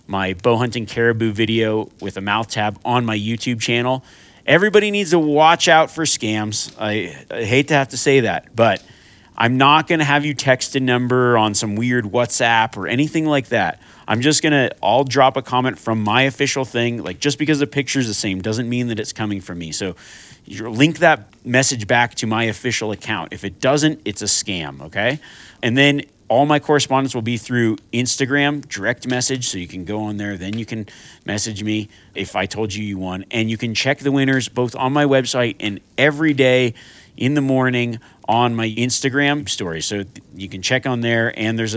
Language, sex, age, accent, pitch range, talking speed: English, male, 30-49, American, 105-135 Hz, 210 wpm